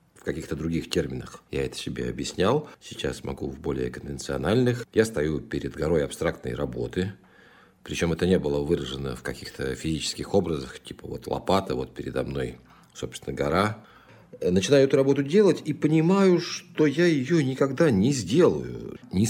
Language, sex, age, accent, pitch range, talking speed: Russian, male, 40-59, native, 75-110 Hz, 150 wpm